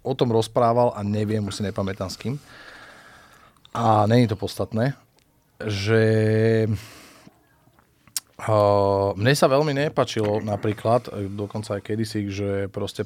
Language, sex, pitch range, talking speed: Slovak, male, 100-115 Hz, 115 wpm